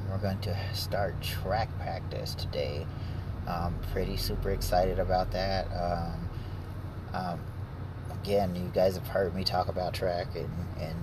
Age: 30-49